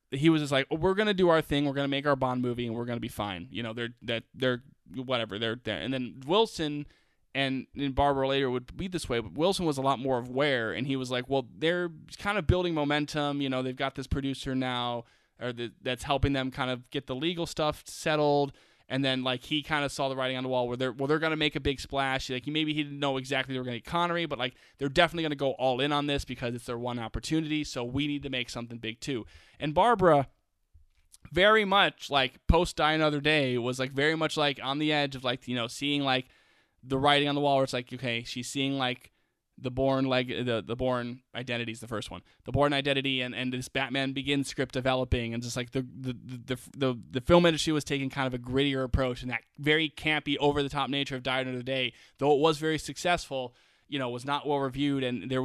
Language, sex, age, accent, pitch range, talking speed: English, male, 20-39, American, 125-145 Hz, 255 wpm